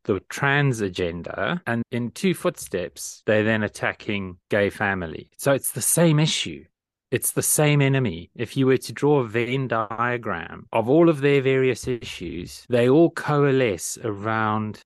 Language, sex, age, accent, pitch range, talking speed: English, male, 30-49, British, 100-130 Hz, 160 wpm